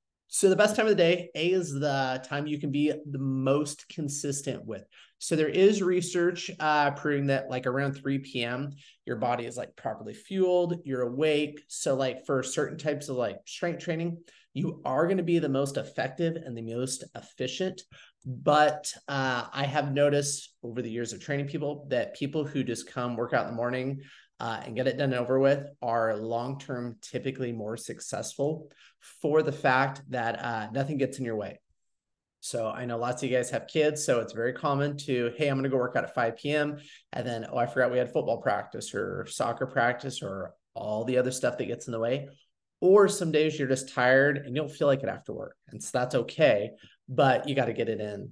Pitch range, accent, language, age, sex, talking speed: 125-150 Hz, American, English, 30-49, male, 215 wpm